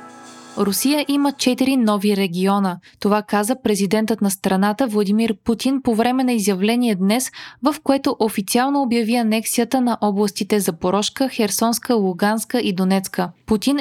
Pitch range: 205-260 Hz